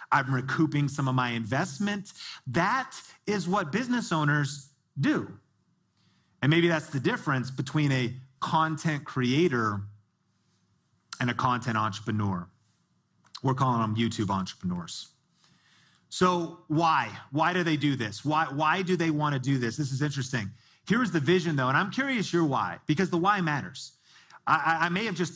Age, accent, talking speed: 30-49, American, 155 wpm